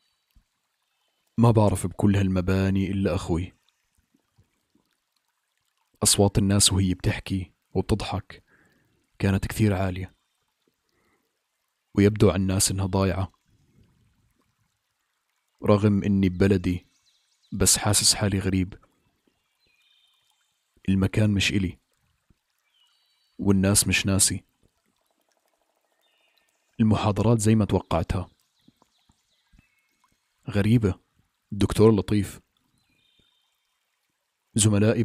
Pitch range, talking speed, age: 95-105 Hz, 70 wpm, 40-59